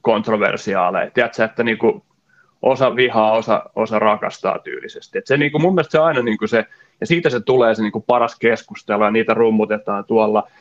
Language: Finnish